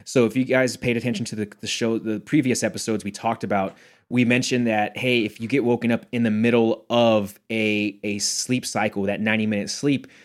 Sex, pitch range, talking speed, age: male, 105-120 Hz, 210 wpm, 20-39